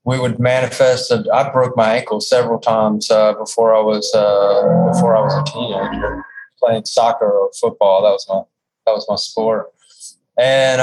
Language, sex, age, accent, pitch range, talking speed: English, male, 20-39, American, 110-130 Hz, 175 wpm